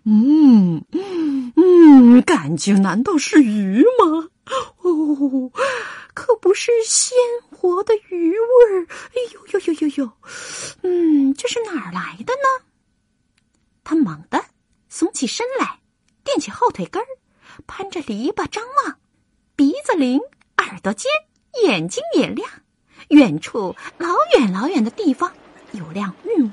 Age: 30-49